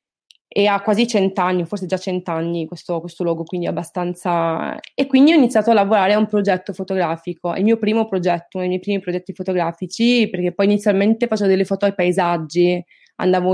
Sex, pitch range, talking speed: female, 180-220 Hz, 185 wpm